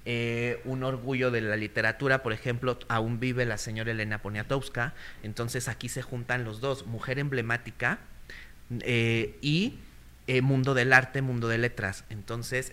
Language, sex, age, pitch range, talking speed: Spanish, male, 30-49, 115-140 Hz, 150 wpm